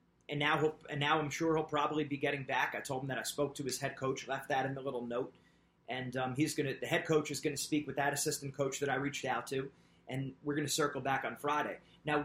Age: 30-49